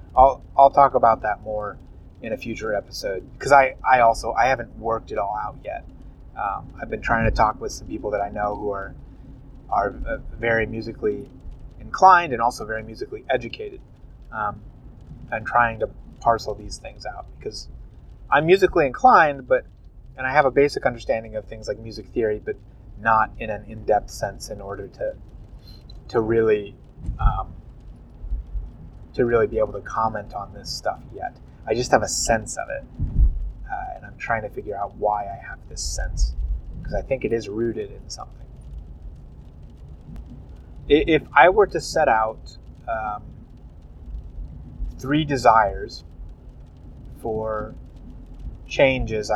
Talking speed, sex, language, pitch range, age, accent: 155 wpm, male, English, 80-130 Hz, 30-49, American